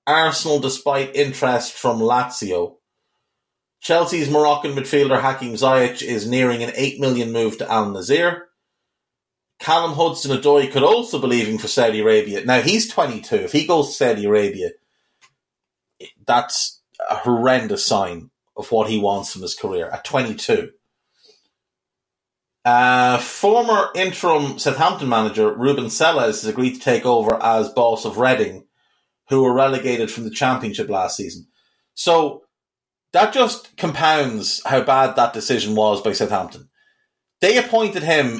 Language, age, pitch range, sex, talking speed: English, 30-49, 125-170 Hz, male, 135 wpm